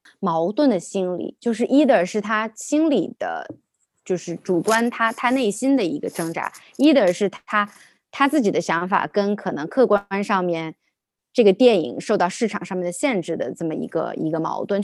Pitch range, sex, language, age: 180-250 Hz, female, Chinese, 20-39